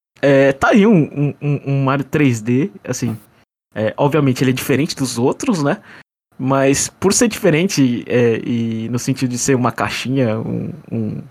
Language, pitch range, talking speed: Portuguese, 125-160 Hz, 170 wpm